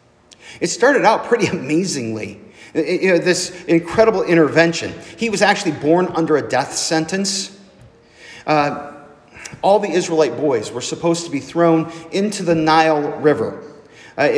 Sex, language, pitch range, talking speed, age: male, English, 140-185 Hz, 130 wpm, 40-59